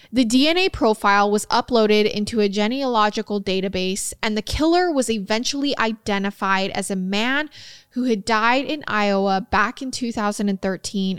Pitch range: 200-250 Hz